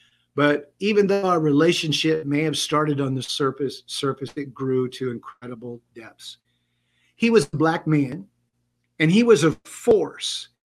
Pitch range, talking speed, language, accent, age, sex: 125-175 Hz, 150 wpm, English, American, 50-69, male